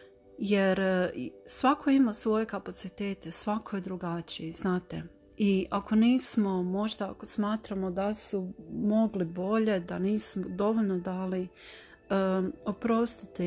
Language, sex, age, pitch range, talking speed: Croatian, female, 40-59, 175-210 Hz, 105 wpm